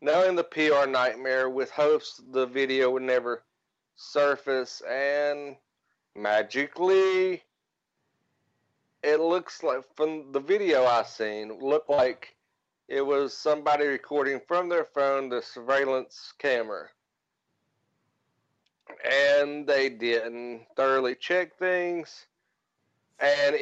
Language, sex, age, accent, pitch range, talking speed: English, male, 40-59, American, 120-155 Hz, 105 wpm